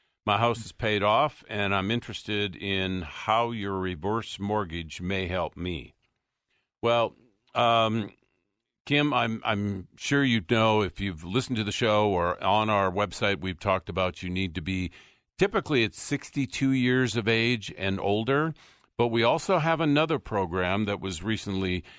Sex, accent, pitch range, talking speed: male, American, 95-120 Hz, 160 wpm